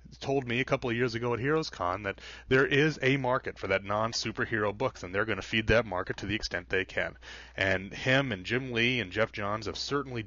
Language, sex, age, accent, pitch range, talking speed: English, male, 30-49, American, 95-130 Hz, 240 wpm